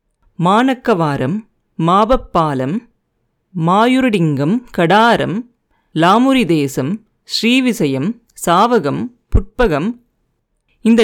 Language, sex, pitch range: Tamil, female, 165-235 Hz